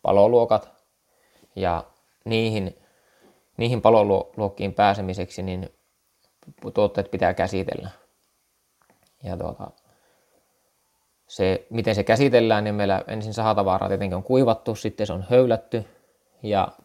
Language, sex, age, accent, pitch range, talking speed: Finnish, male, 20-39, native, 95-110 Hz, 95 wpm